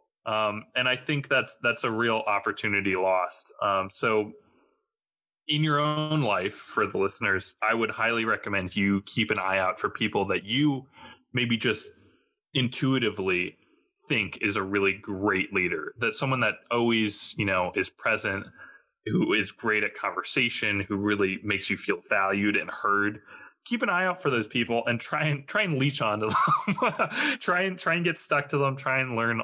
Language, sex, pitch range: English, male, 105-150 Hz